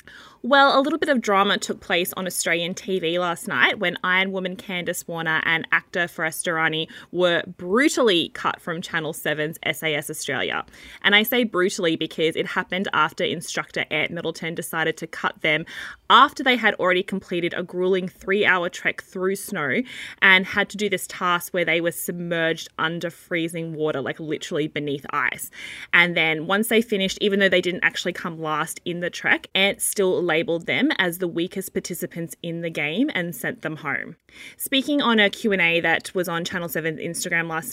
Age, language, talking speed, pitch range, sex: 20-39, English, 180 wpm, 160-195 Hz, female